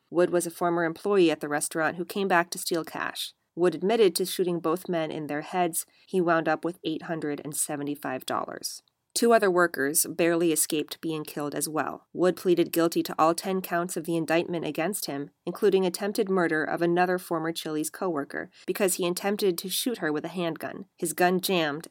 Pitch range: 160-195 Hz